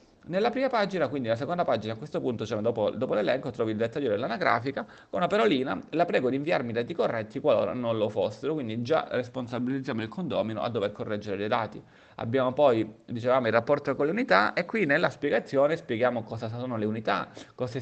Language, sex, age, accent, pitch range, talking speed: Italian, male, 30-49, native, 115-145 Hz, 200 wpm